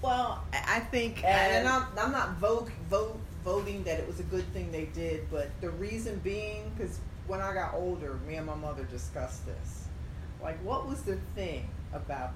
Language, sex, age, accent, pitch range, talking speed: English, female, 40-59, American, 80-100 Hz, 180 wpm